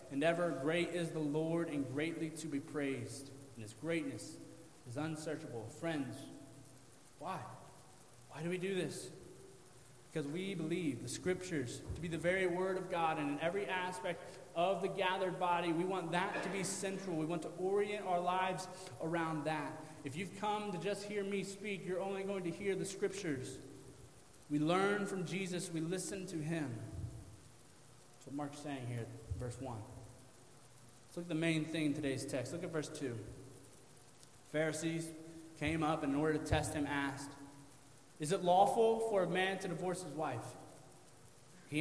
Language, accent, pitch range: English, American, 140-185 Hz